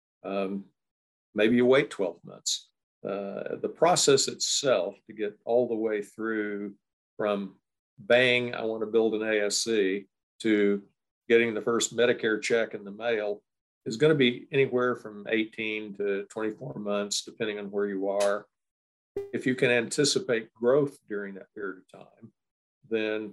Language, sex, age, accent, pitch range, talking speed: English, male, 50-69, American, 100-120 Hz, 150 wpm